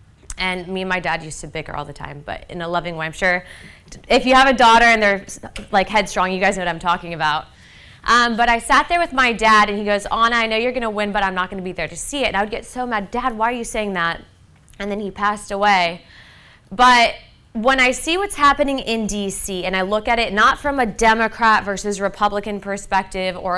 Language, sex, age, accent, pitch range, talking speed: English, female, 20-39, American, 190-235 Hz, 255 wpm